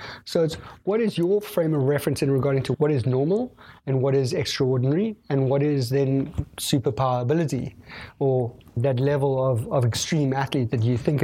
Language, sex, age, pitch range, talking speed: English, male, 30-49, 130-155 Hz, 180 wpm